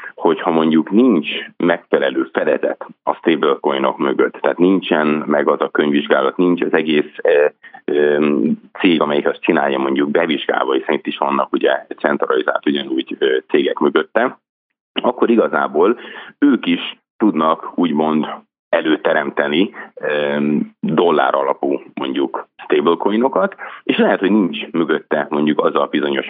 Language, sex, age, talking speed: Hungarian, male, 30-49, 120 wpm